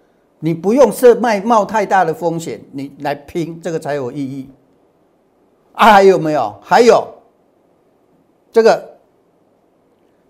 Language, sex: Chinese, male